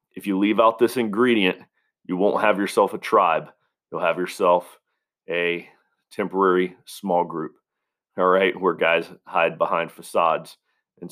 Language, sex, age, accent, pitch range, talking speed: English, male, 40-59, American, 90-110 Hz, 145 wpm